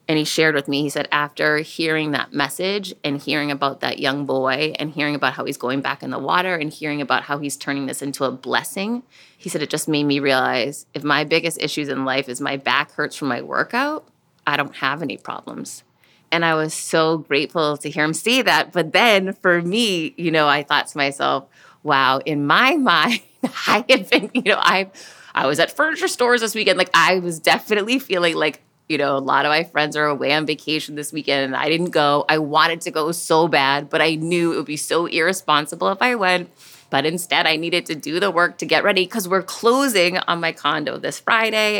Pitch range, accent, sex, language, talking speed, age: 145-180 Hz, American, female, English, 225 wpm, 30-49